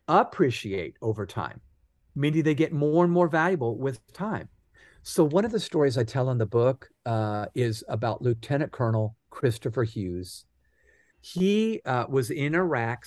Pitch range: 115-155 Hz